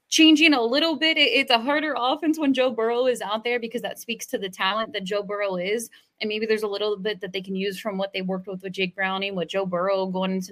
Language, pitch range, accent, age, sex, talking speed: English, 185-220 Hz, American, 20-39, female, 270 wpm